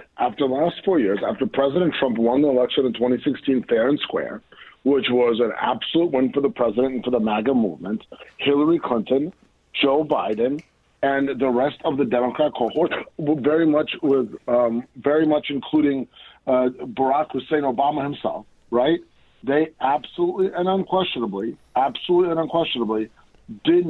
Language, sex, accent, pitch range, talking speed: English, male, American, 130-170 Hz, 155 wpm